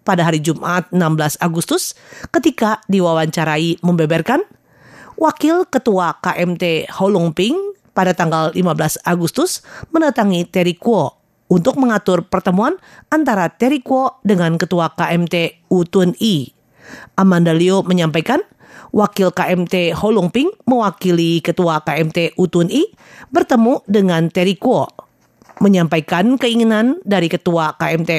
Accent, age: Indonesian, 40-59